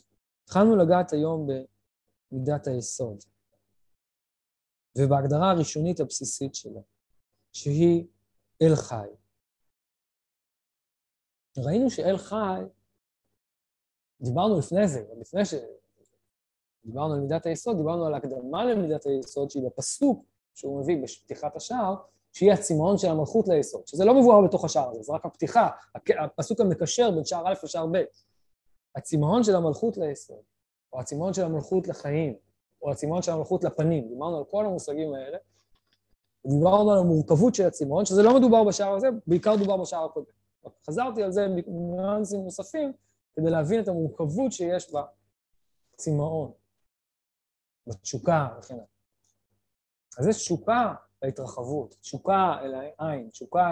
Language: Hebrew